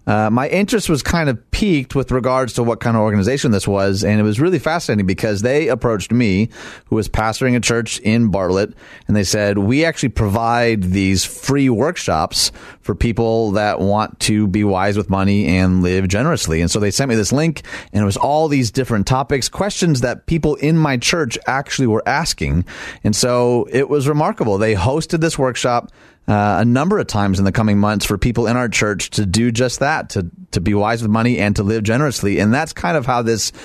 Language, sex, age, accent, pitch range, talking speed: English, male, 30-49, American, 100-130 Hz, 210 wpm